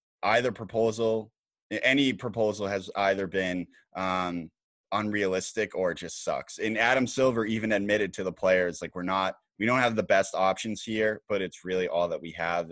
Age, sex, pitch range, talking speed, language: 20-39, male, 95-110 Hz, 180 wpm, English